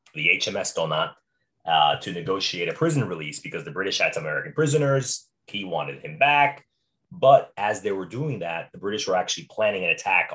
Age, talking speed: 30-49, 190 wpm